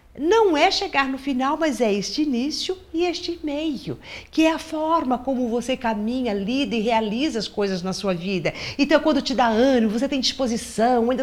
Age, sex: 50-69, female